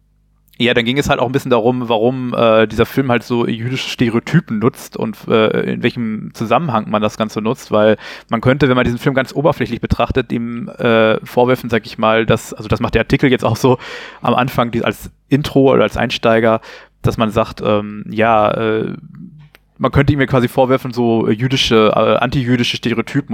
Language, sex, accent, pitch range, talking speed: German, male, German, 115-130 Hz, 195 wpm